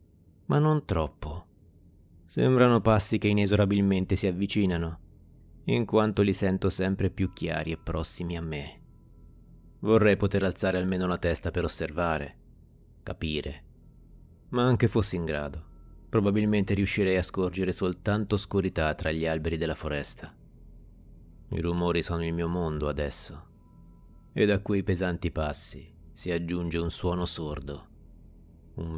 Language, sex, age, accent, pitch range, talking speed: Italian, male, 30-49, native, 80-100 Hz, 130 wpm